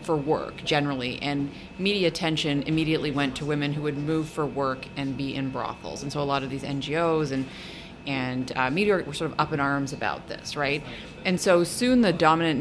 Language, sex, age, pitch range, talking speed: English, female, 30-49, 135-160 Hz, 210 wpm